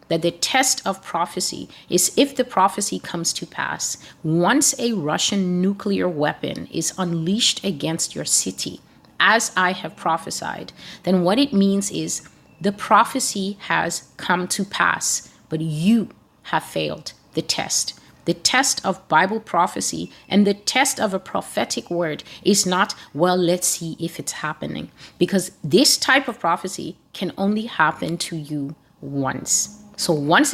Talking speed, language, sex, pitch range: 150 wpm, English, female, 170-215 Hz